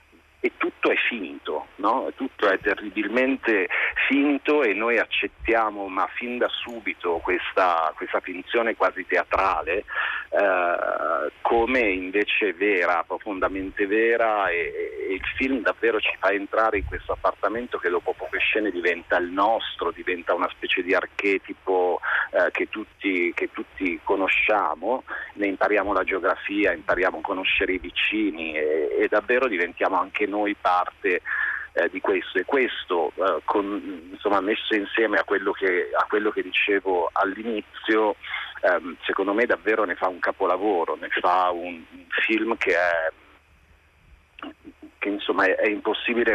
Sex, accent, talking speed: male, native, 140 wpm